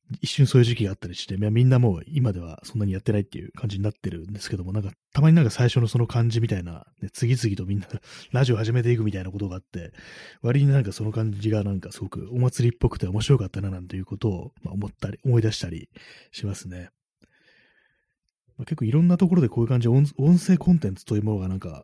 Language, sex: Japanese, male